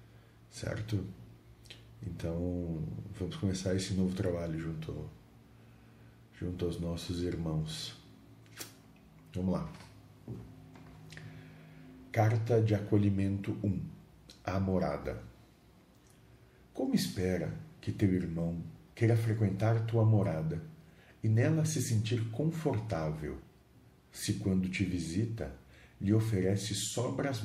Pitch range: 90-115 Hz